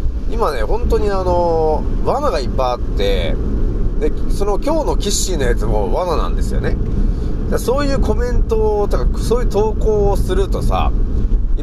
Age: 30-49